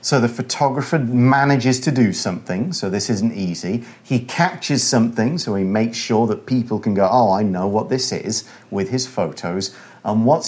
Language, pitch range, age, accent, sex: Chinese, 115-145 Hz, 40-59, British, male